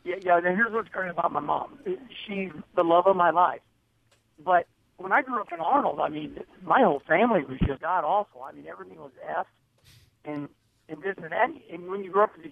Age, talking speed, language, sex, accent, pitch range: 60-79, 225 wpm, English, male, American, 160-205 Hz